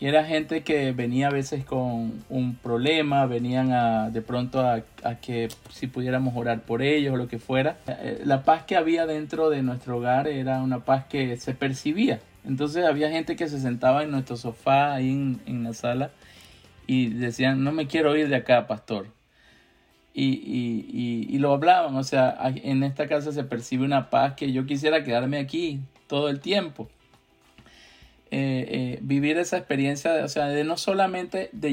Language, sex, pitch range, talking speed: Spanish, male, 125-150 Hz, 185 wpm